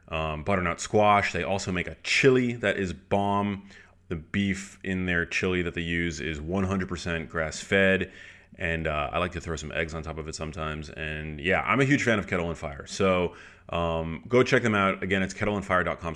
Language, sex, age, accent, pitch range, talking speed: English, male, 30-49, American, 90-120 Hz, 200 wpm